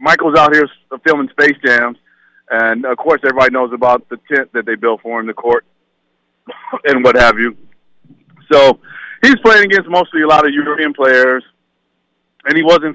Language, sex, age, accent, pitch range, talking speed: English, male, 40-59, American, 120-155 Hz, 175 wpm